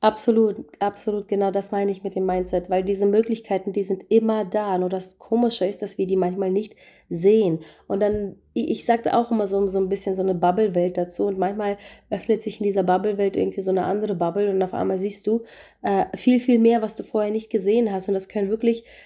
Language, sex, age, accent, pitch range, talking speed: German, female, 30-49, German, 185-215 Hz, 225 wpm